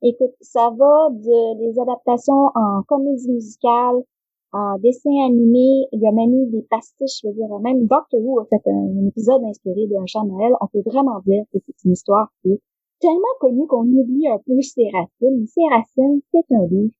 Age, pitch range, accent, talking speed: 30-49, 220-290 Hz, Canadian, 200 wpm